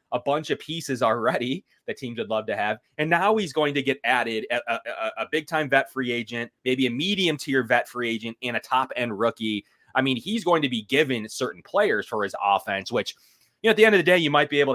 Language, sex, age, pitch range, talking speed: English, male, 30-49, 120-165 Hz, 255 wpm